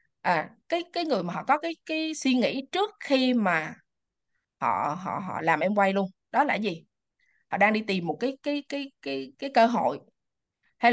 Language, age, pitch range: Vietnamese, 20-39, 205-285 Hz